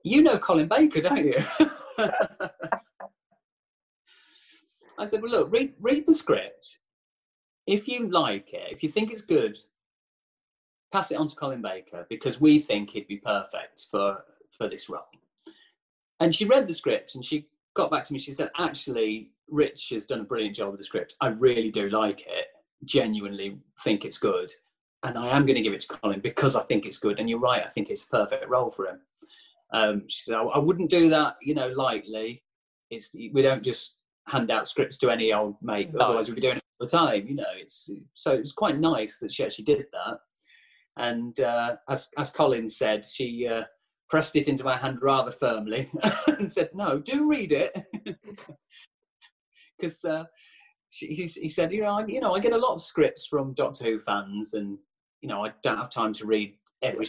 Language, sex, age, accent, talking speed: English, male, 30-49, British, 195 wpm